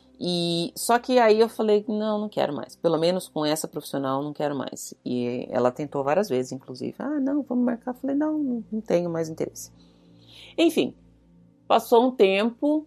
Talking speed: 180 wpm